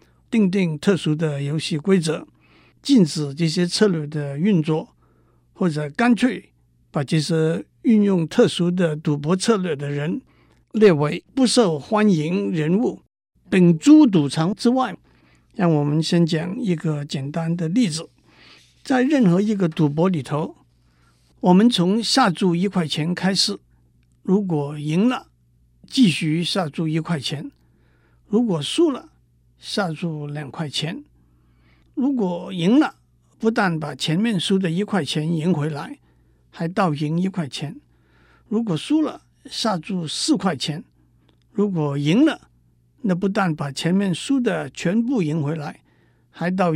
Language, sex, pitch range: Chinese, male, 150-205 Hz